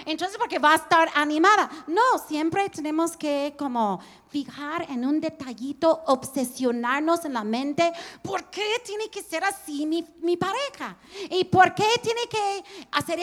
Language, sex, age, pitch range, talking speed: English, female, 40-59, 250-345 Hz, 160 wpm